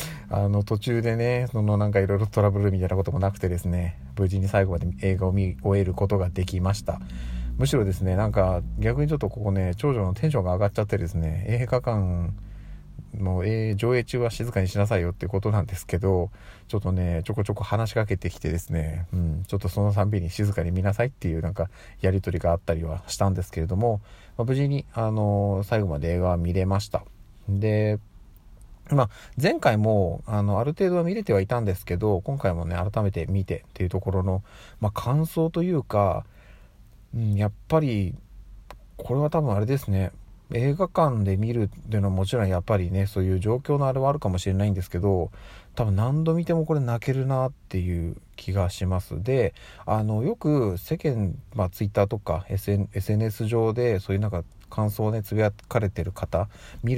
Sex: male